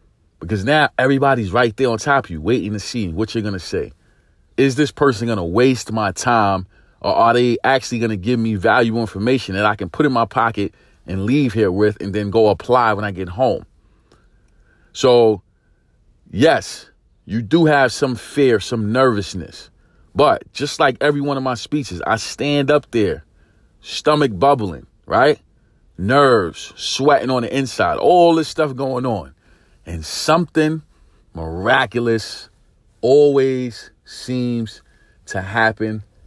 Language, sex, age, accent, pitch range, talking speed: English, male, 30-49, American, 105-140 Hz, 155 wpm